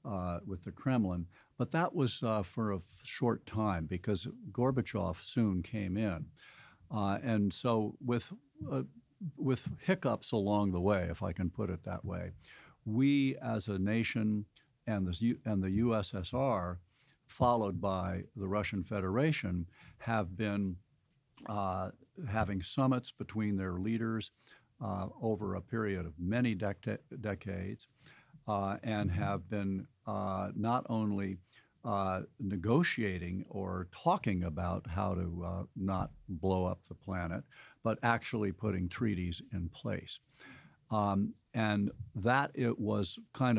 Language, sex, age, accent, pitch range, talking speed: English, male, 60-79, American, 95-120 Hz, 130 wpm